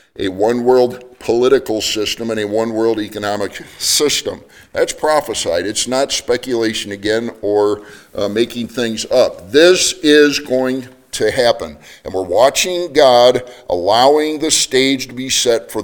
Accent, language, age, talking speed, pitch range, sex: American, English, 50-69, 135 wpm, 110-135 Hz, male